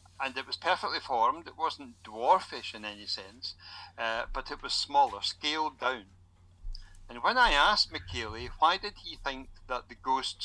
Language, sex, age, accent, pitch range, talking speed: English, male, 60-79, British, 90-130 Hz, 170 wpm